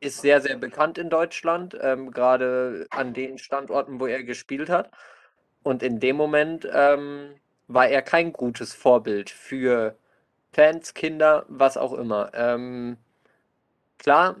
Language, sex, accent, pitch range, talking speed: German, male, German, 120-140 Hz, 135 wpm